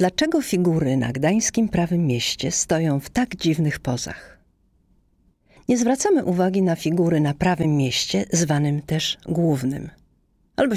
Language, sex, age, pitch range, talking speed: Polish, female, 50-69, 155-210 Hz, 130 wpm